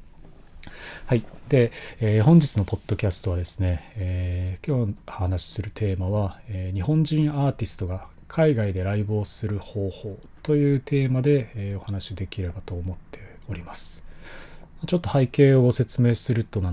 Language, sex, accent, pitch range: Japanese, male, native, 90-115 Hz